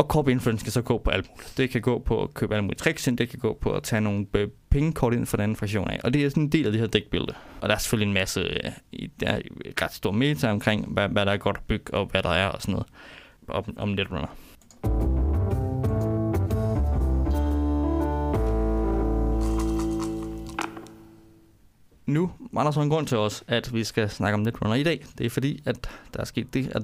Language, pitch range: Danish, 110-130 Hz